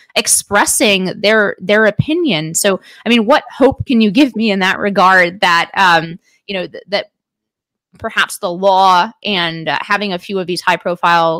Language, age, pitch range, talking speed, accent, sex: English, 20-39, 175-220 Hz, 175 wpm, American, female